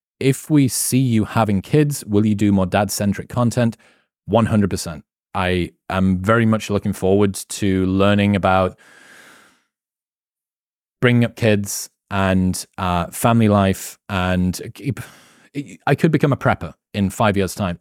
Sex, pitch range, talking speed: male, 100-130 Hz, 130 wpm